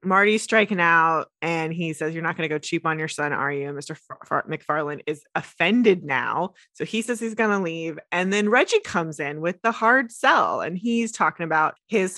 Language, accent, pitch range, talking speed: English, American, 155-205 Hz, 225 wpm